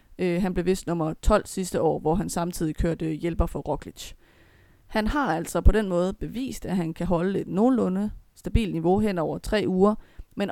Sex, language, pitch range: female, Danish, 170-200 Hz